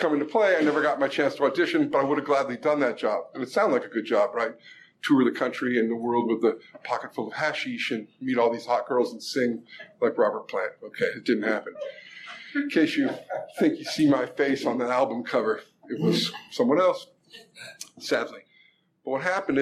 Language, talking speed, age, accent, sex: English, 225 wpm, 50-69, American, male